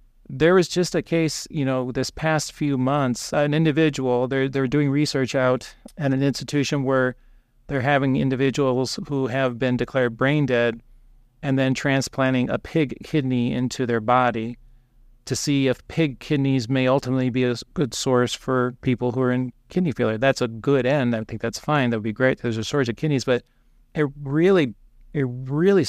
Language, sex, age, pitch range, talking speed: English, male, 40-59, 125-145 Hz, 185 wpm